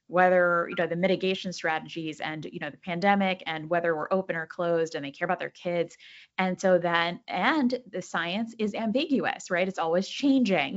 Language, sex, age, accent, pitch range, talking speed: English, female, 20-39, American, 165-195 Hz, 195 wpm